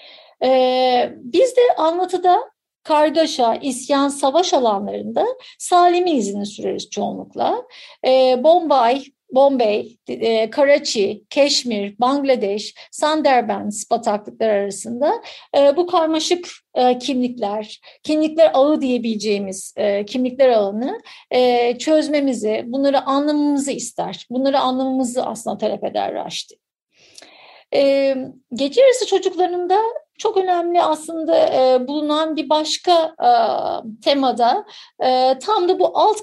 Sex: female